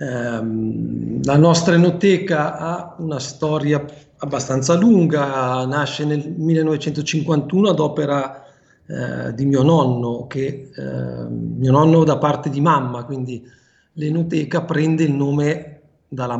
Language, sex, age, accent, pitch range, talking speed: Italian, male, 40-59, native, 135-160 Hz, 115 wpm